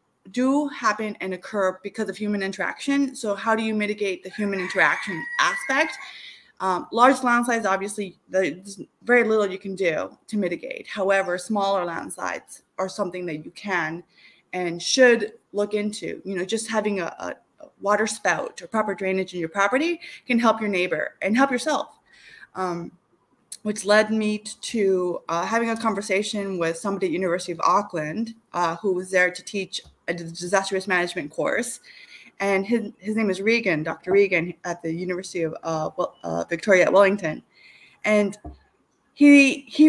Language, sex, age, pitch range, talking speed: English, female, 20-39, 180-220 Hz, 160 wpm